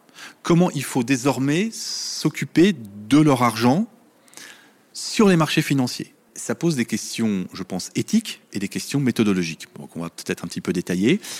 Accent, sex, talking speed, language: French, male, 165 wpm, French